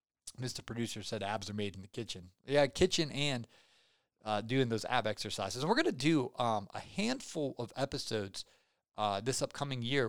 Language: English